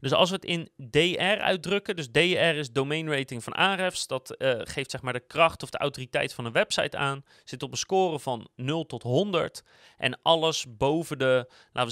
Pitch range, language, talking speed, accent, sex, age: 125-165 Hz, Dutch, 205 wpm, Dutch, male, 30-49